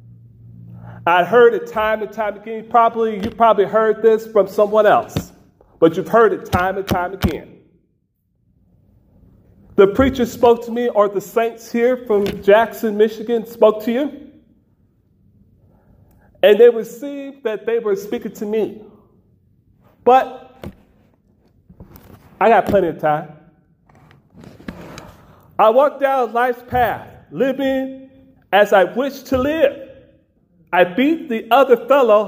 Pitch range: 185-240 Hz